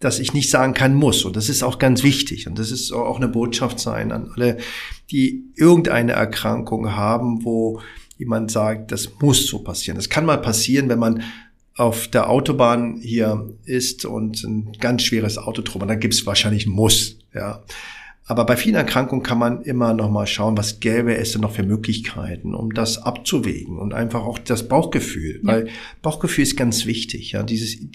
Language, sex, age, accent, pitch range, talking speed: German, male, 50-69, German, 110-125 Hz, 190 wpm